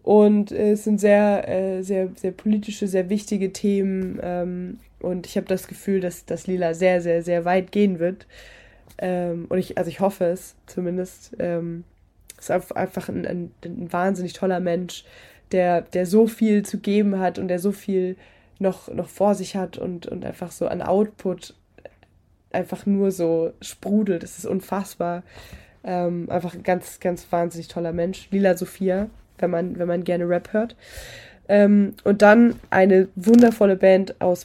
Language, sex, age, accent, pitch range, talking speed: German, female, 20-39, German, 175-195 Hz, 160 wpm